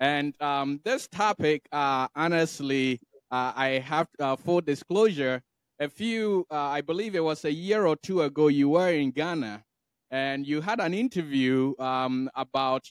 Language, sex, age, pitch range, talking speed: English, male, 20-39, 135-165 Hz, 165 wpm